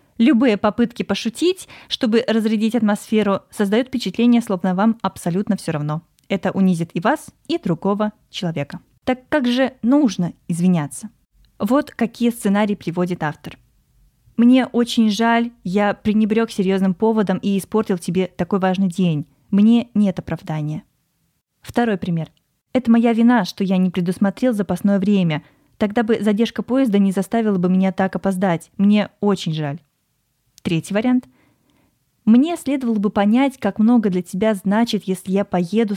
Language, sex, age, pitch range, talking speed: Russian, female, 20-39, 180-225 Hz, 140 wpm